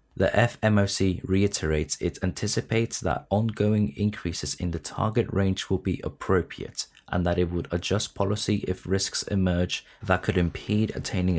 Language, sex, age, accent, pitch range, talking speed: English, male, 20-39, British, 85-105 Hz, 150 wpm